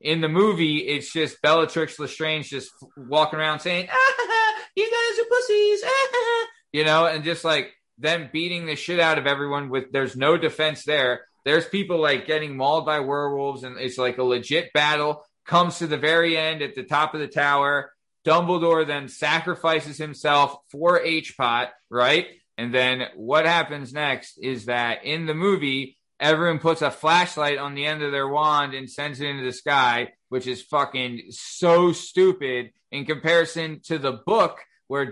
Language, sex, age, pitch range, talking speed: English, male, 20-39, 140-170 Hz, 175 wpm